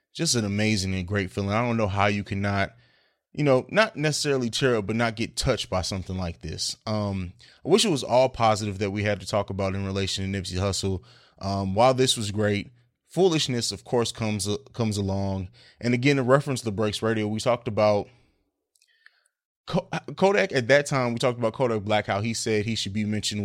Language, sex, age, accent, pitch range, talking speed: English, male, 20-39, American, 105-130 Hz, 210 wpm